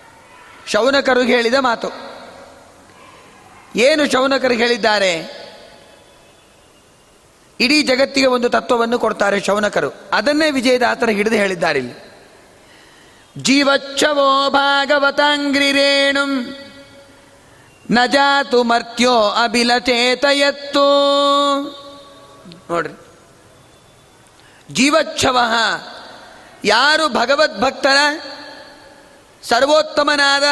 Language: Kannada